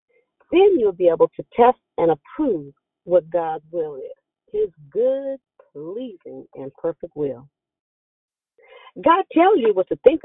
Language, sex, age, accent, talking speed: English, female, 40-59, American, 140 wpm